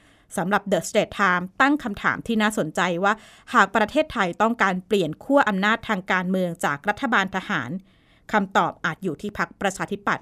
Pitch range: 185-225 Hz